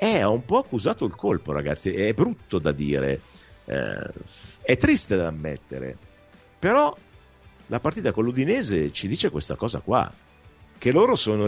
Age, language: 50-69, Italian